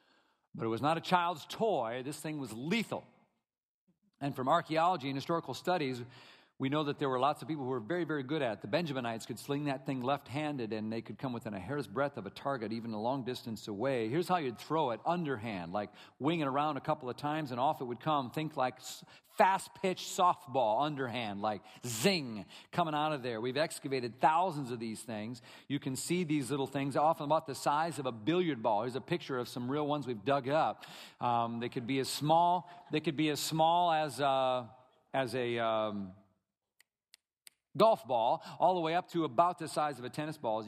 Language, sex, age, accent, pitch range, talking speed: English, male, 50-69, American, 120-155 Hz, 225 wpm